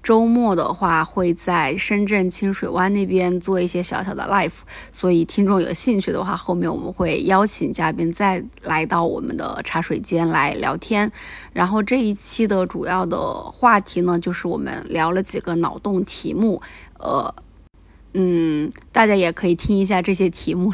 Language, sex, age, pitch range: Chinese, female, 20-39, 170-195 Hz